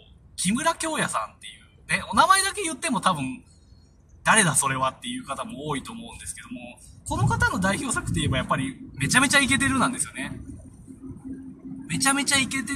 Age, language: 20-39, Japanese